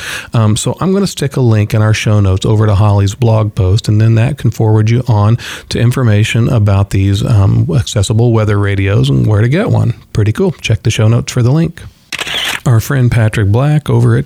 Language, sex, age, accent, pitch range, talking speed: English, male, 40-59, American, 105-125 Hz, 220 wpm